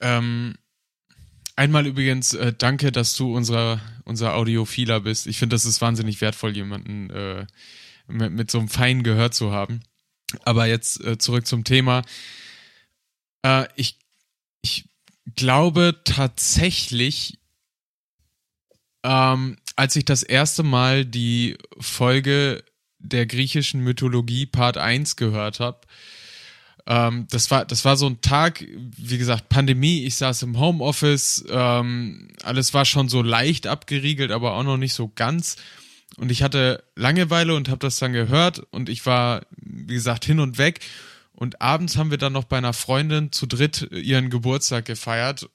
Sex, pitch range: male, 115-135 Hz